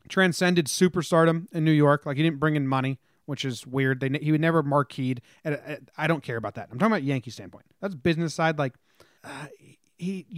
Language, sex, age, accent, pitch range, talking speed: English, male, 30-49, American, 130-170 Hz, 210 wpm